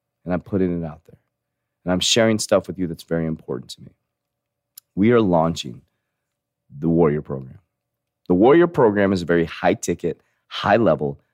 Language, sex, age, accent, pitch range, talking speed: English, male, 30-49, American, 75-100 Hz, 165 wpm